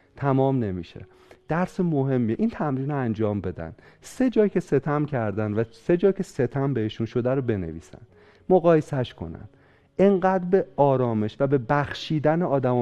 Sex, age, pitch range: male, 40-59, 120-160 Hz